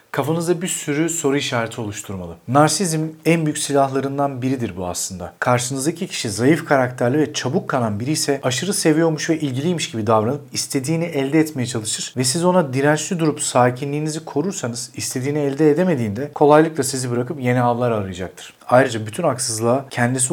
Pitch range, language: 125-165 Hz, Turkish